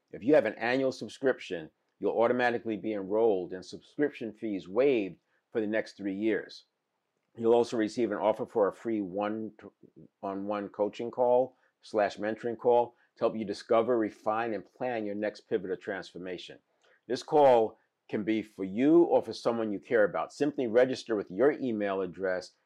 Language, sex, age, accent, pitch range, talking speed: English, male, 50-69, American, 100-120 Hz, 165 wpm